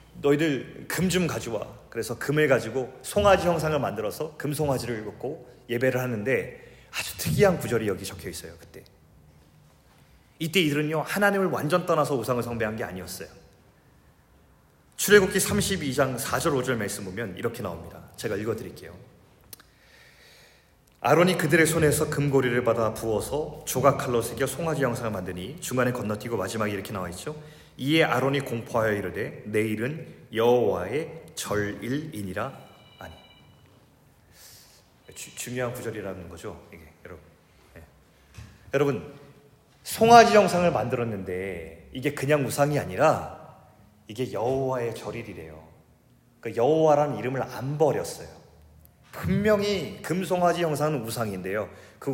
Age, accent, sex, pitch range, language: 30-49, native, male, 110-155 Hz, Korean